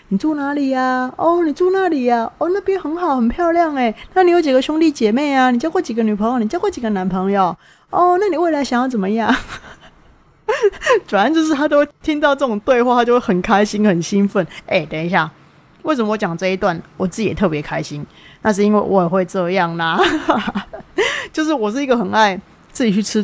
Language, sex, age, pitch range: Chinese, female, 20-39, 185-285 Hz